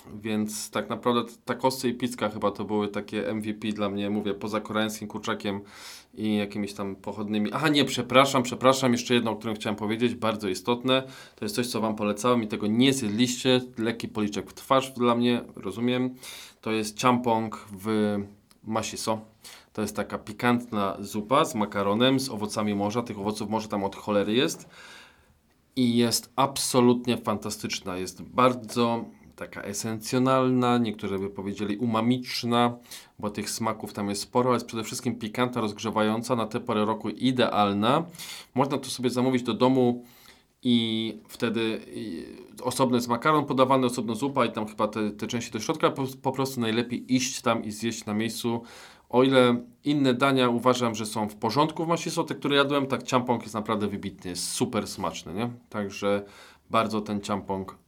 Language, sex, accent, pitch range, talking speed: Polish, male, native, 105-125 Hz, 170 wpm